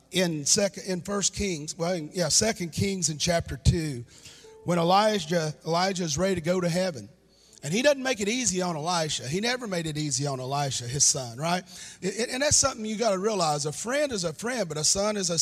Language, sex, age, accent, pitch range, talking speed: English, male, 40-59, American, 160-210 Hz, 220 wpm